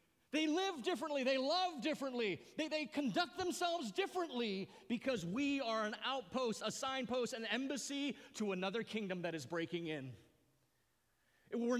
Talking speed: 140 wpm